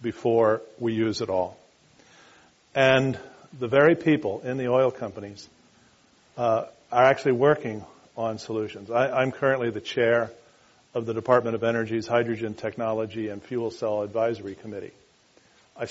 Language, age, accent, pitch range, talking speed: English, 50-69, American, 110-130 Hz, 140 wpm